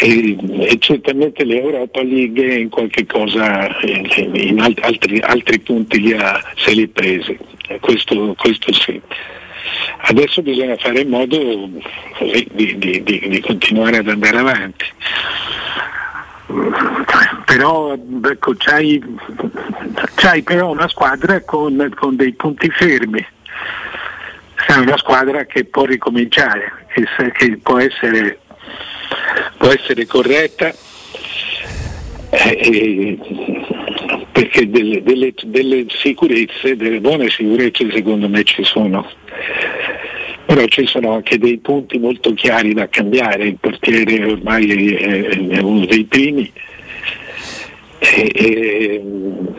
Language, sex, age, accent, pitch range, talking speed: Italian, male, 60-79, native, 105-130 Hz, 115 wpm